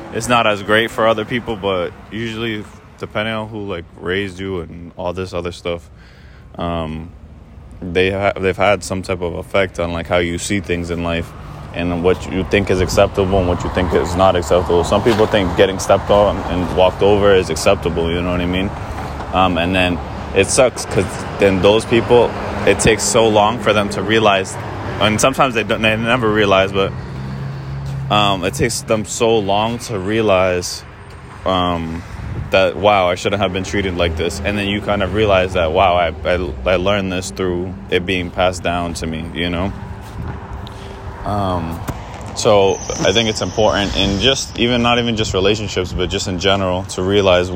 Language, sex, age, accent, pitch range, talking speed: English, male, 20-39, American, 90-105 Hz, 185 wpm